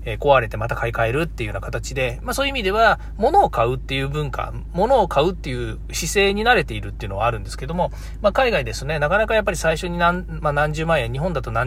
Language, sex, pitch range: Japanese, male, 120-200 Hz